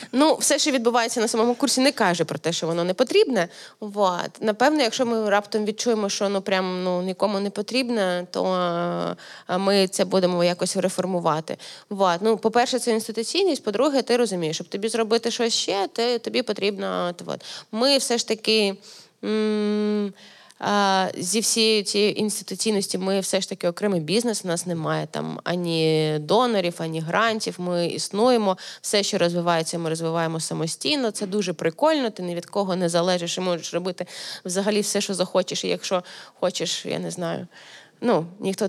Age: 20-39